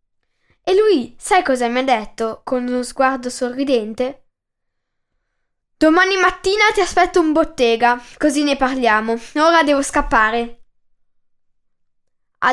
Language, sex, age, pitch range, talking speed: Italian, female, 10-29, 240-330 Hz, 115 wpm